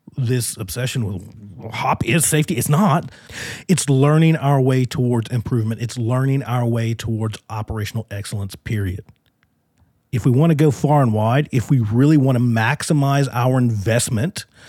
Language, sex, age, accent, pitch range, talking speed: English, male, 40-59, American, 115-150 Hz, 155 wpm